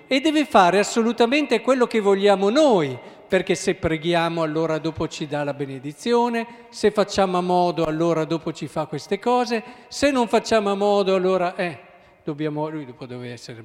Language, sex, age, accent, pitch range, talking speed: Italian, male, 50-69, native, 155-215 Hz, 170 wpm